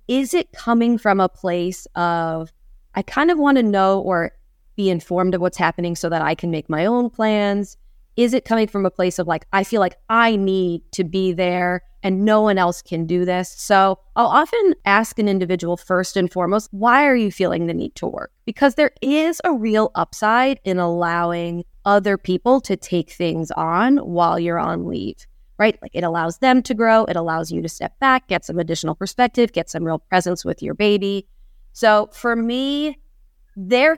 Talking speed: 200 wpm